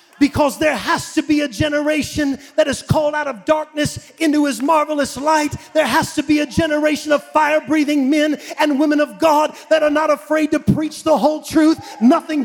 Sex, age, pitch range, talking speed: male, 30-49, 290-330 Hz, 200 wpm